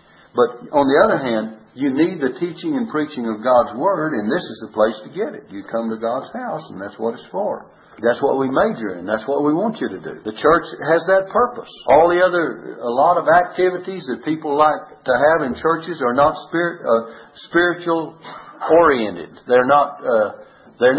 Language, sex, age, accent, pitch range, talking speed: English, male, 60-79, American, 130-195 Hz, 200 wpm